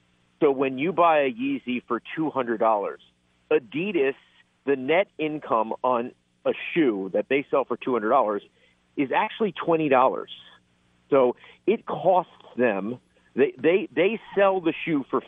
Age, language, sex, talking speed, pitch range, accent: 50-69, English, male, 155 wpm, 125-180 Hz, American